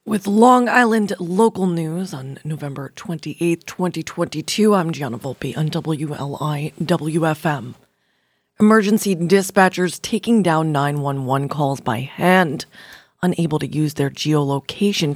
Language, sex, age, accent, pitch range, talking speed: English, female, 20-39, American, 150-190 Hz, 105 wpm